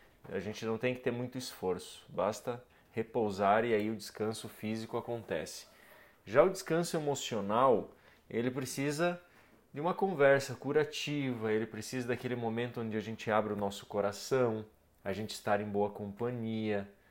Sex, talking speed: male, 150 wpm